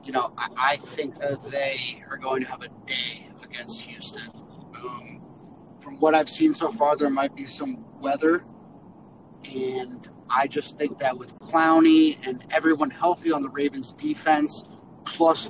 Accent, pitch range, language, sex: American, 135-170 Hz, English, male